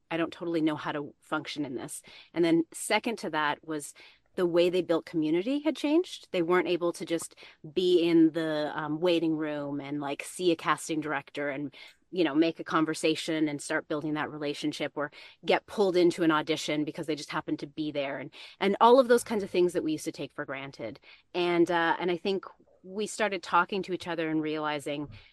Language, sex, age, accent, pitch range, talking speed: English, female, 30-49, American, 150-185 Hz, 215 wpm